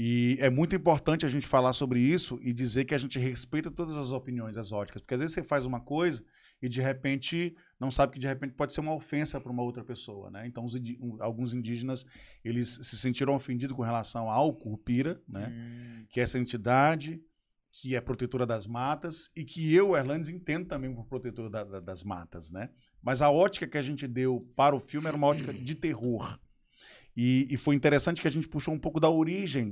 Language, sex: Portuguese, male